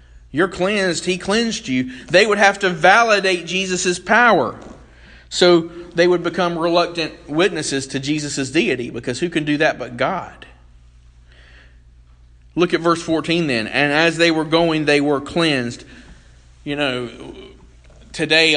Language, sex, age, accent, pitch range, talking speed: English, male, 40-59, American, 115-150 Hz, 140 wpm